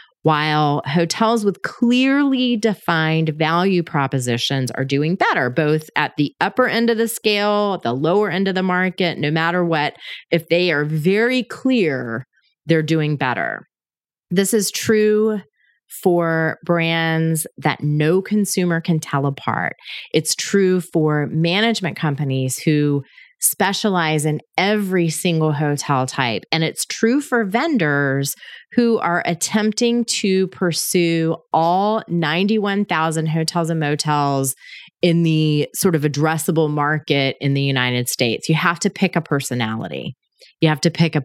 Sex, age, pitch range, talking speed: female, 30-49, 150-195 Hz, 135 wpm